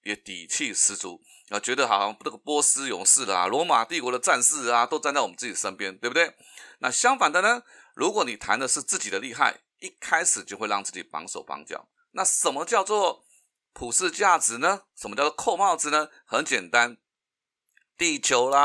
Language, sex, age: Chinese, male, 30-49